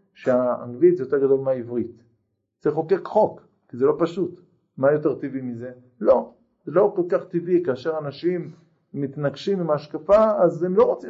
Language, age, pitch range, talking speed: Hebrew, 50-69, 145-195 Hz, 170 wpm